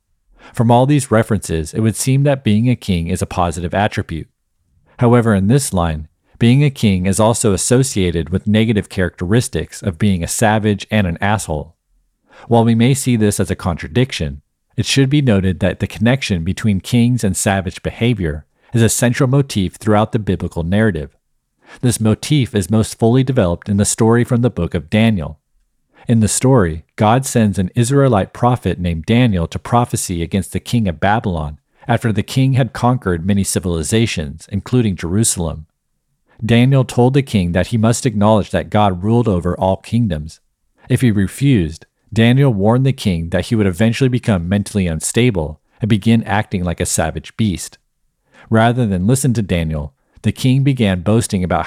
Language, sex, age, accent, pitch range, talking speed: English, male, 40-59, American, 90-120 Hz, 170 wpm